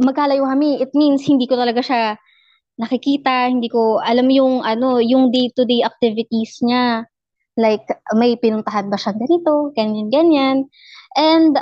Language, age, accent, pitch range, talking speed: Filipino, 20-39, native, 215-270 Hz, 135 wpm